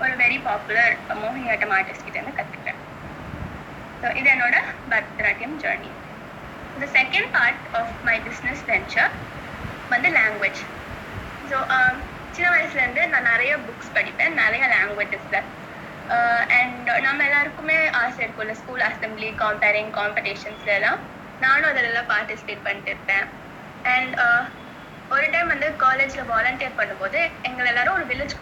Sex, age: female, 20-39